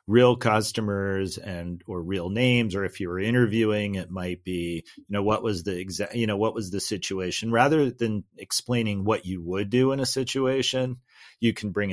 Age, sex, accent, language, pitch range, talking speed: 40-59, male, American, English, 95-115 Hz, 195 wpm